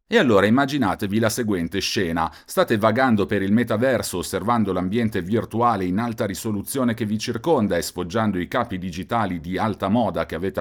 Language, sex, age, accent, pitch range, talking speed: Italian, male, 40-59, native, 90-120 Hz, 170 wpm